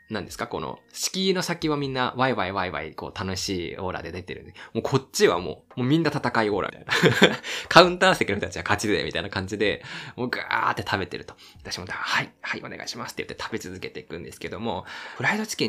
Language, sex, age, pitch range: Japanese, male, 20-39, 95-145 Hz